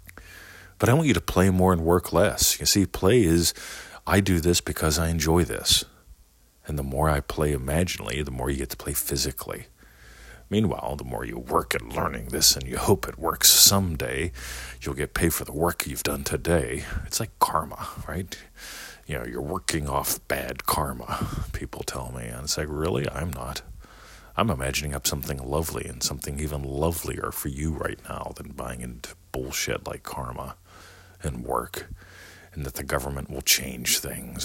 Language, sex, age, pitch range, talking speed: English, male, 40-59, 65-85 Hz, 185 wpm